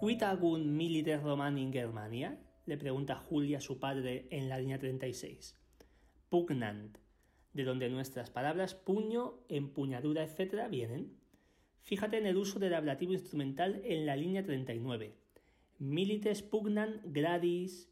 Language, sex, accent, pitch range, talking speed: Spanish, male, Spanish, 130-180 Hz, 125 wpm